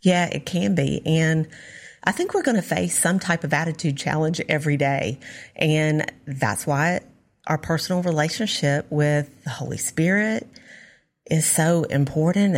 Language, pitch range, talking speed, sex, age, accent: English, 135-165 Hz, 145 wpm, female, 40-59, American